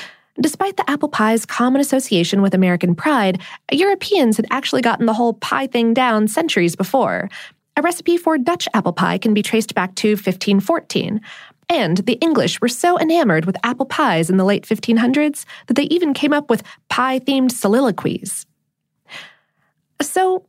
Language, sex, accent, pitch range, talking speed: English, female, American, 210-300 Hz, 160 wpm